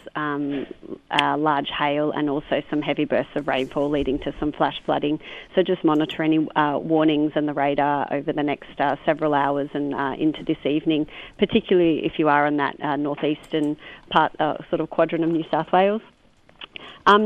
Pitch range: 150-170 Hz